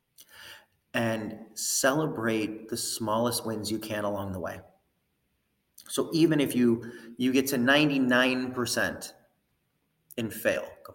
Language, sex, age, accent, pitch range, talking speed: English, male, 30-49, American, 100-135 Hz, 115 wpm